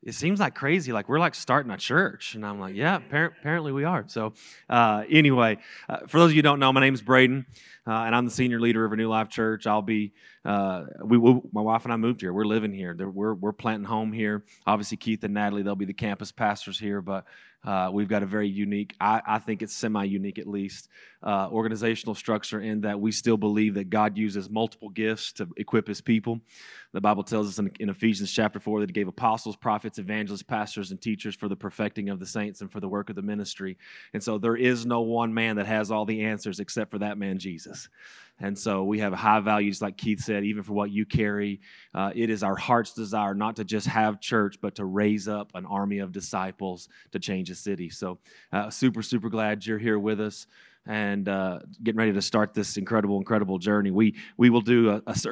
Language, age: English, 30-49